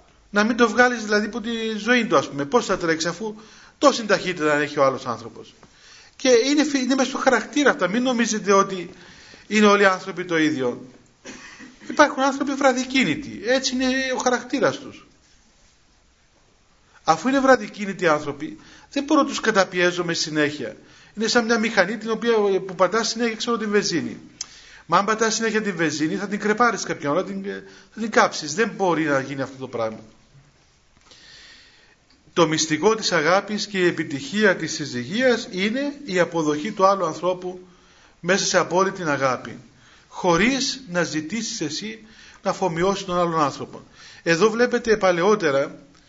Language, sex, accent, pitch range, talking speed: Greek, male, native, 165-235 Hz, 160 wpm